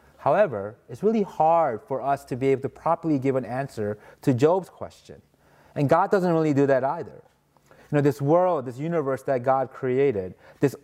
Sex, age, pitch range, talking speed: male, 30-49, 120-160 Hz, 190 wpm